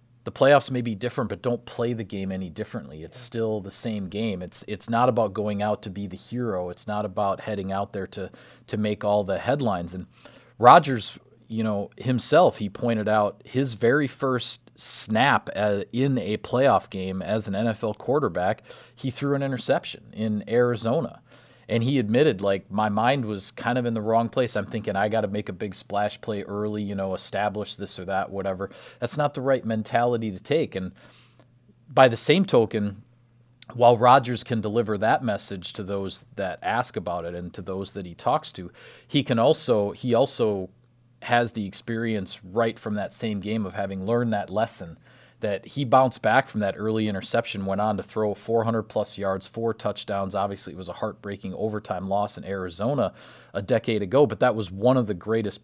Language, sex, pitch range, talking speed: English, male, 100-120 Hz, 195 wpm